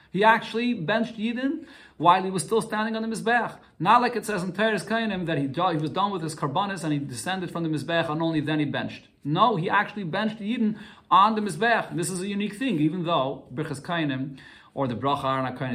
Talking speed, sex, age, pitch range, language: 230 wpm, male, 30-49, 130-195 Hz, English